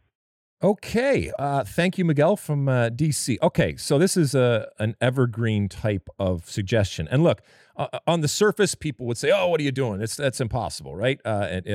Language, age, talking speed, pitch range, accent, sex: English, 40-59, 195 wpm, 100-140 Hz, American, male